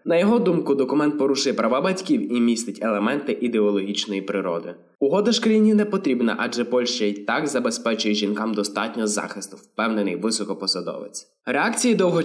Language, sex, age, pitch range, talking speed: Ukrainian, male, 20-39, 105-160 Hz, 140 wpm